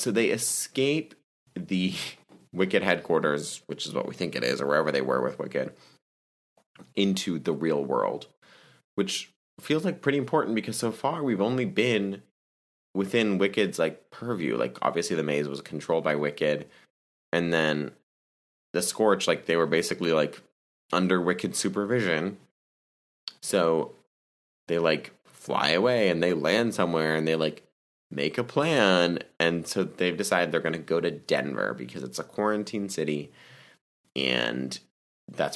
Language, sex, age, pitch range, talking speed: English, male, 20-39, 70-100 Hz, 150 wpm